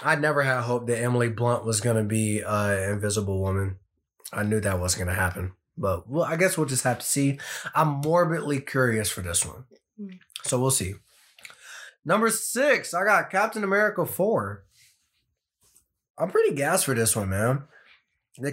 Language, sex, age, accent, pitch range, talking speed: English, male, 20-39, American, 110-155 Hz, 170 wpm